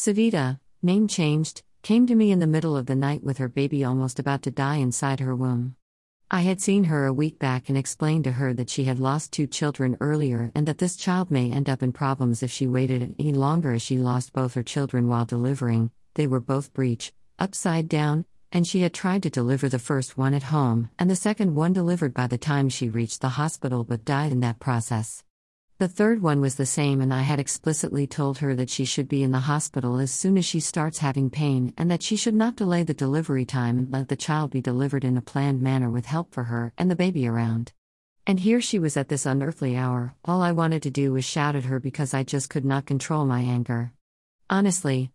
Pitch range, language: 130-155 Hz, English